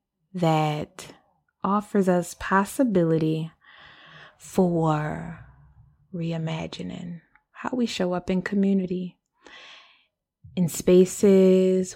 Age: 20-39